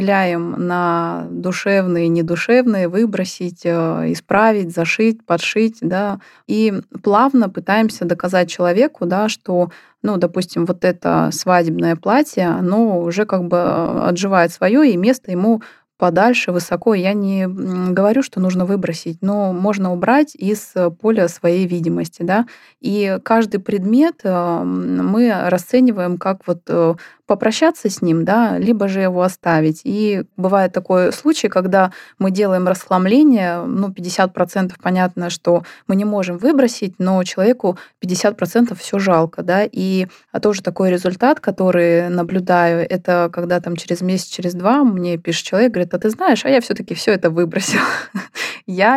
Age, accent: 20-39, native